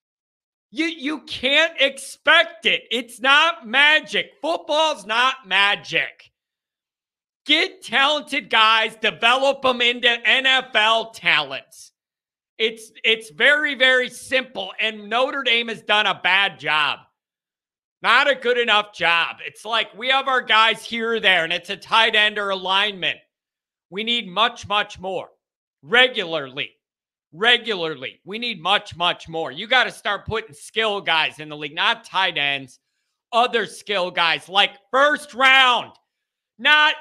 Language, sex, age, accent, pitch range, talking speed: English, male, 50-69, American, 210-270 Hz, 140 wpm